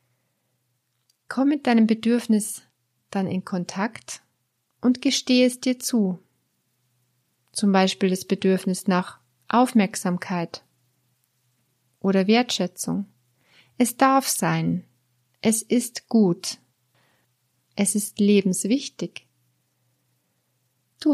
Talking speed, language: 85 wpm, German